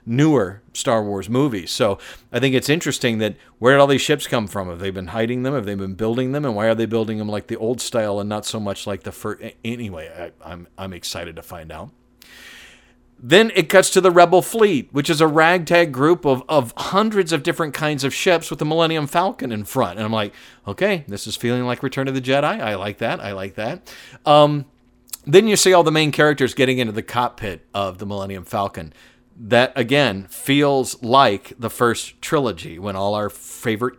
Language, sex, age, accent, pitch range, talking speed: English, male, 40-59, American, 105-145 Hz, 215 wpm